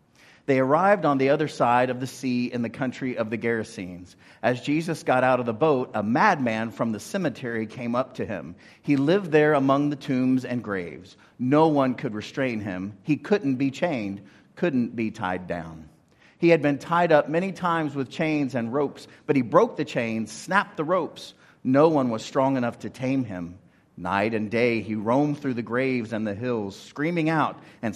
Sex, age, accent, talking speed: male, 40-59, American, 200 wpm